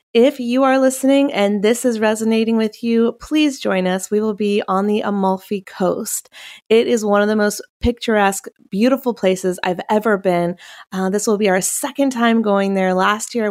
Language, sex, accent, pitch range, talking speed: English, female, American, 190-225 Hz, 190 wpm